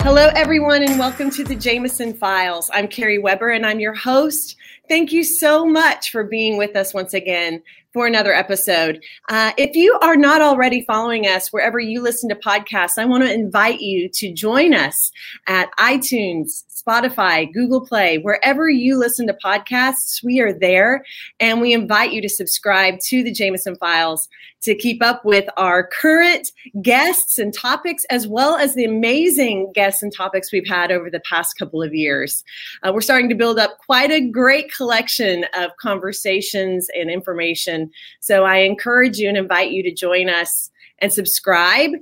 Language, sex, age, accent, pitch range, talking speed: English, female, 30-49, American, 185-255 Hz, 175 wpm